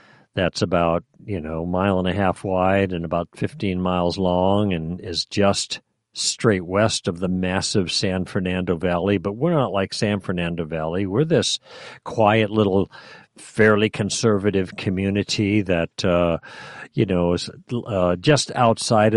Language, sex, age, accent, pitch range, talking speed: English, male, 50-69, American, 90-110 Hz, 150 wpm